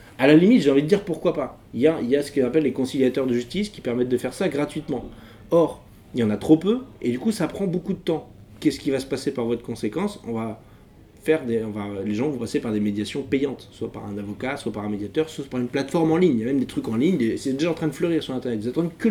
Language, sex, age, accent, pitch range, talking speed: French, male, 20-39, French, 110-150 Hz, 310 wpm